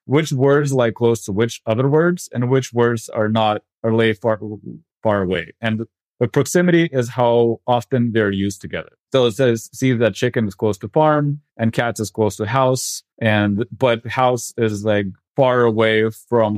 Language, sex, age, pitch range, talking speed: English, male, 30-49, 105-130 Hz, 185 wpm